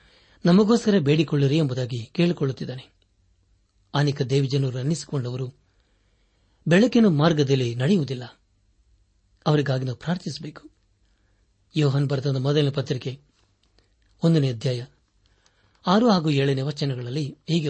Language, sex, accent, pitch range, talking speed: Kannada, male, native, 125-165 Hz, 80 wpm